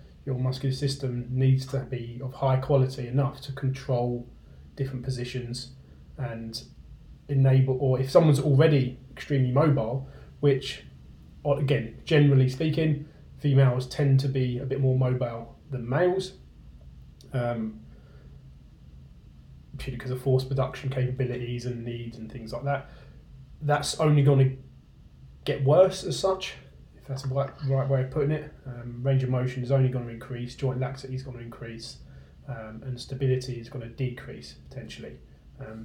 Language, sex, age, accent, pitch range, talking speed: English, male, 20-39, British, 115-135 Hz, 145 wpm